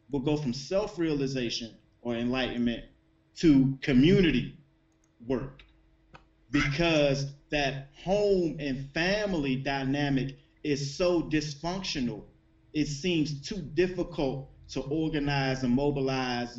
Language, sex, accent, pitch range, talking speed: English, male, American, 125-155 Hz, 95 wpm